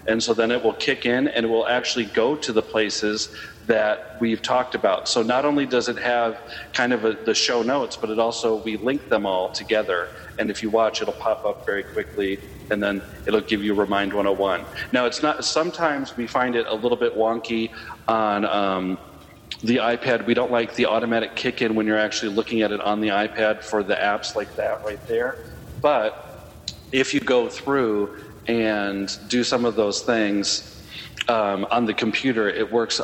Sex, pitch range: male, 105-120 Hz